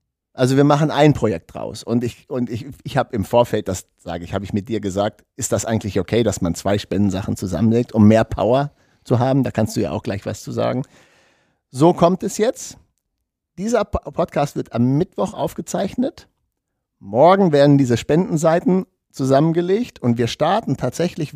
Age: 50-69